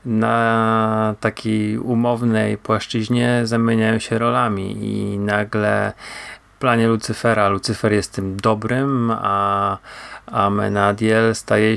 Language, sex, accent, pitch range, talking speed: Polish, male, native, 100-115 Hz, 100 wpm